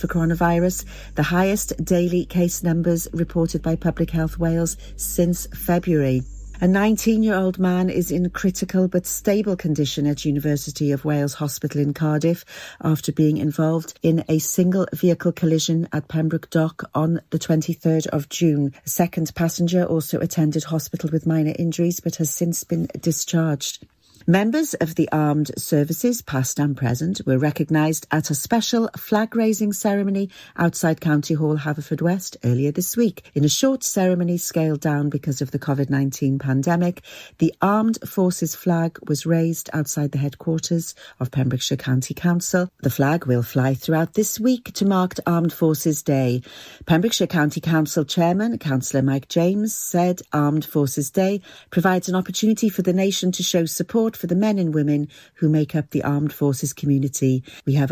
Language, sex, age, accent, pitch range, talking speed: English, female, 40-59, British, 150-180 Hz, 160 wpm